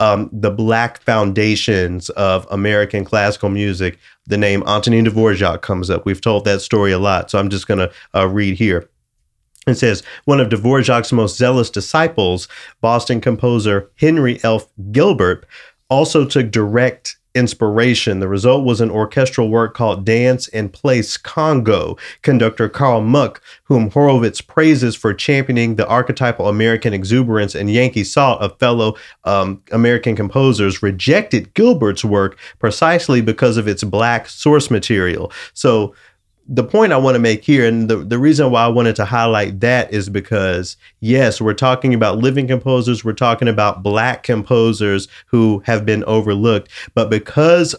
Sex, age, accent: male, 40-59, American